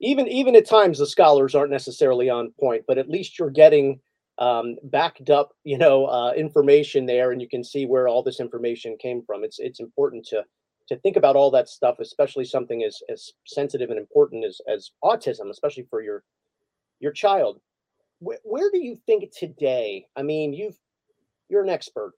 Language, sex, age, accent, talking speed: English, male, 40-59, American, 190 wpm